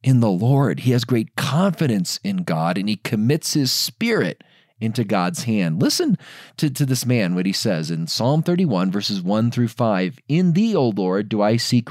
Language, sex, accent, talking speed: English, male, American, 195 wpm